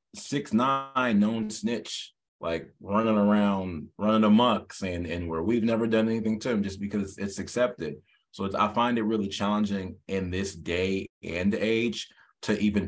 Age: 20-39